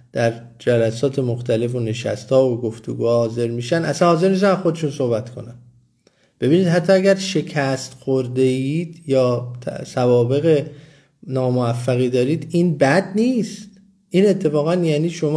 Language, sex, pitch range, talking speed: Persian, male, 125-165 Hz, 130 wpm